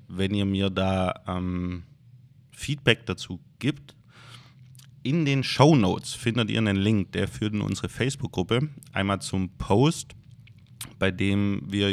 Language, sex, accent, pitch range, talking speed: German, male, German, 95-125 Hz, 130 wpm